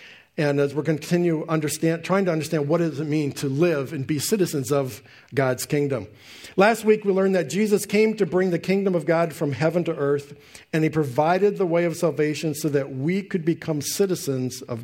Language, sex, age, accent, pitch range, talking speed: English, male, 50-69, American, 145-195 Hz, 205 wpm